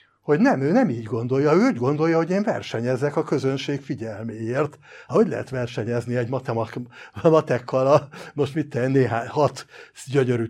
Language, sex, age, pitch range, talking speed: Hungarian, male, 60-79, 125-175 Hz, 160 wpm